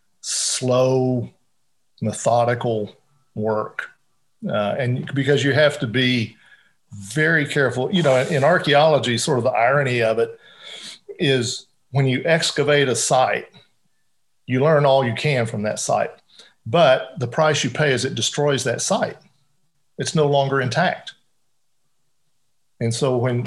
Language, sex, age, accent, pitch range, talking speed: English, male, 50-69, American, 115-145 Hz, 140 wpm